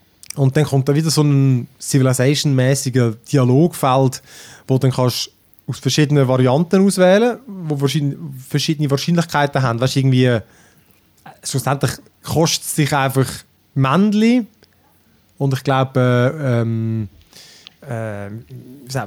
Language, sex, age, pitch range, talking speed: German, male, 20-39, 125-160 Hz, 105 wpm